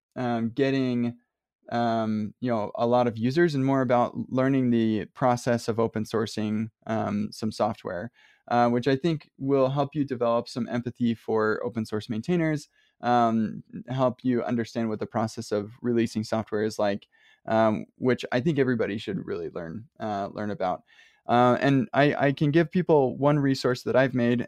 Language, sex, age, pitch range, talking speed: English, male, 20-39, 110-125 Hz, 170 wpm